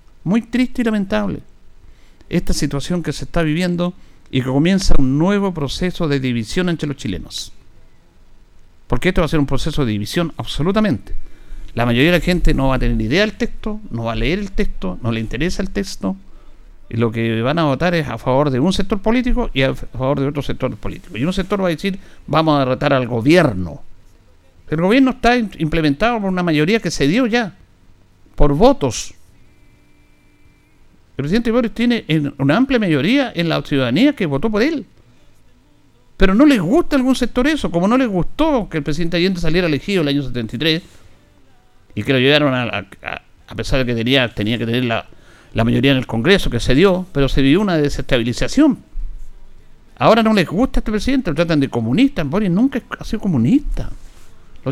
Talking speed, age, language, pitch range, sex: 195 wpm, 60-79, Spanish, 120-195 Hz, male